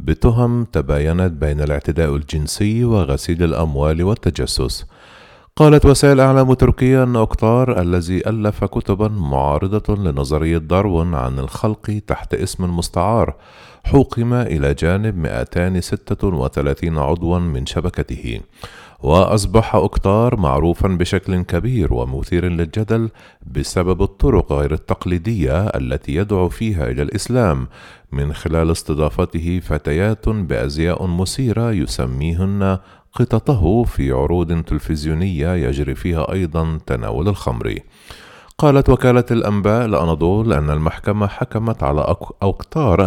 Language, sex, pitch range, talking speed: Arabic, male, 80-105 Hz, 100 wpm